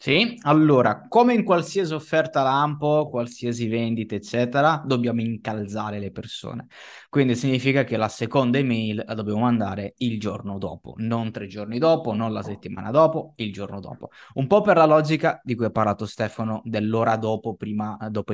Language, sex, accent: Italian, male, native